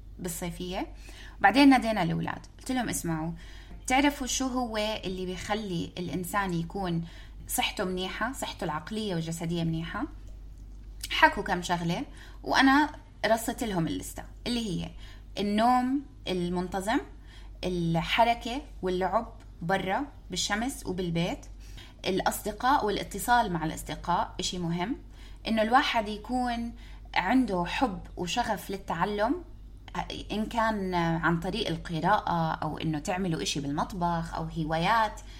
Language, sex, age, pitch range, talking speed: Arabic, female, 20-39, 170-230 Hz, 105 wpm